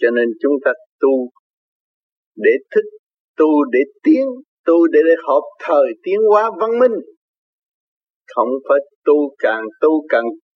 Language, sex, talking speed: Vietnamese, male, 135 wpm